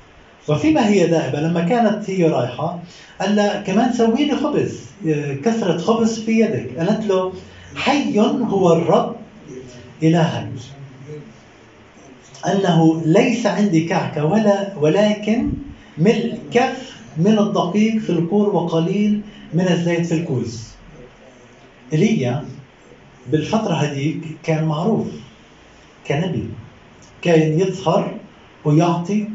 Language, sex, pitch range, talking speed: Arabic, male, 150-210 Hz, 100 wpm